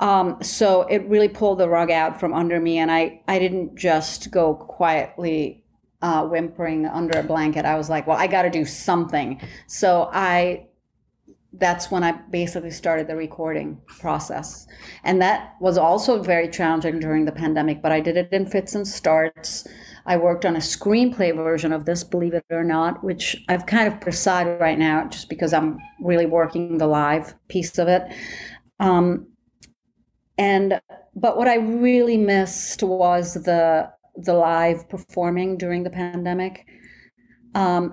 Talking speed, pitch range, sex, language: 165 wpm, 165-195 Hz, female, English